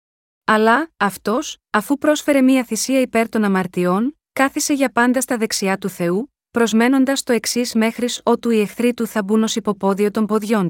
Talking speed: 170 wpm